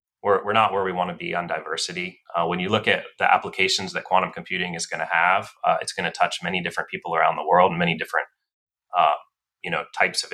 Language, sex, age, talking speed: English, male, 30-49, 250 wpm